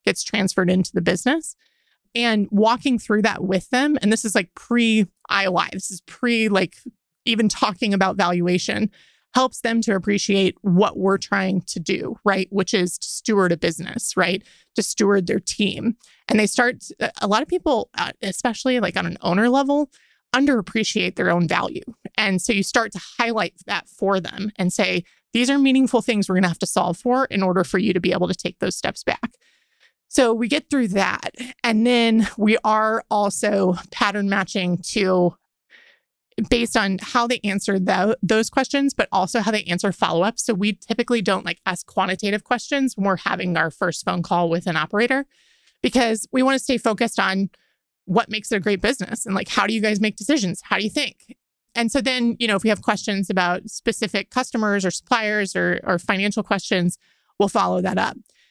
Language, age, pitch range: English, 30-49, 190-235 Hz